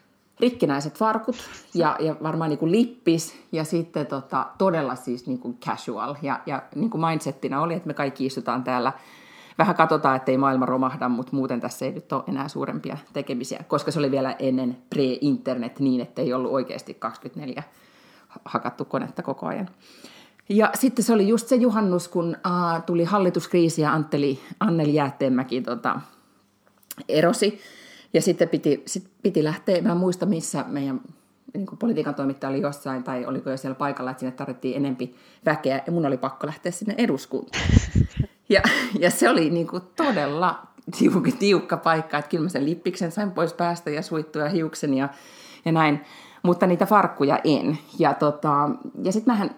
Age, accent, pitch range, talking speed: 30-49, native, 140-190 Hz, 165 wpm